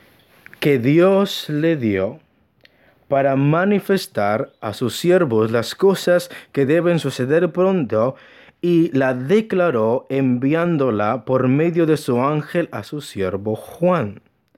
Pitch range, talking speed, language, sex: 125-175 Hz, 115 wpm, English, male